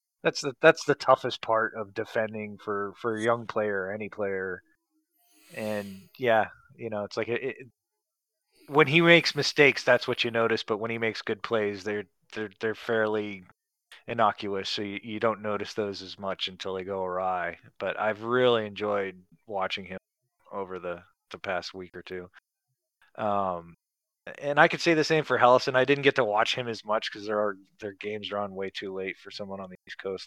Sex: male